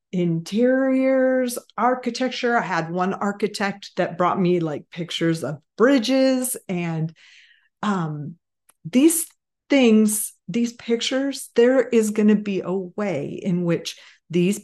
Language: English